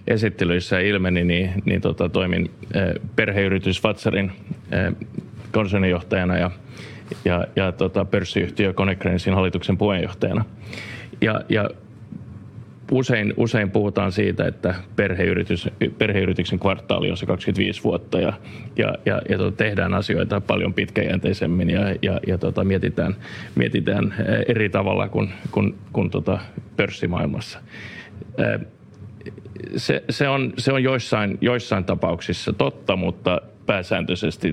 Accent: native